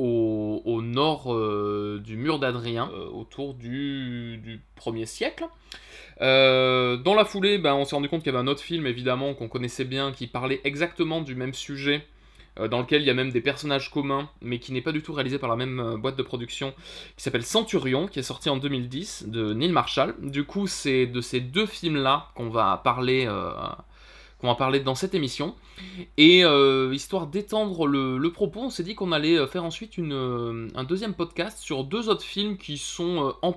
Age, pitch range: 20-39, 125-170 Hz